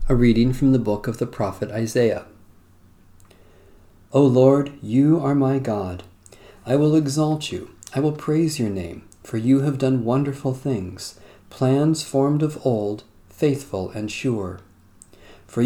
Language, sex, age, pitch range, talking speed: English, male, 40-59, 100-135 Hz, 145 wpm